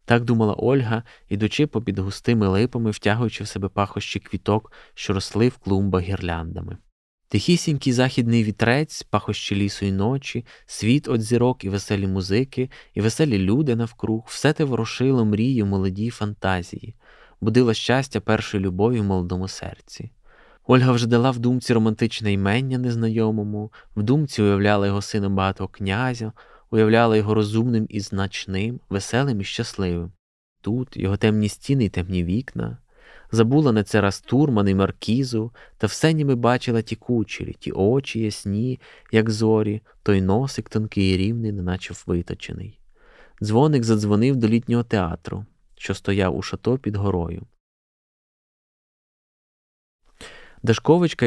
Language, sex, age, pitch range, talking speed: Ukrainian, male, 20-39, 100-120 Hz, 135 wpm